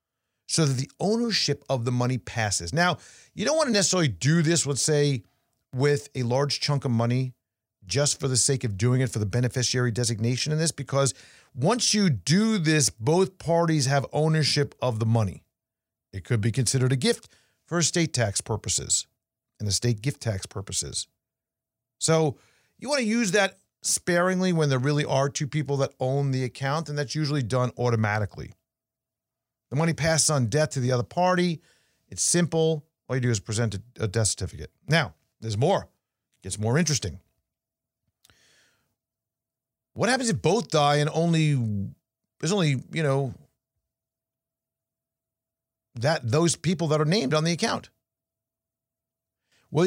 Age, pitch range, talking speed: 40-59, 120-160 Hz, 160 wpm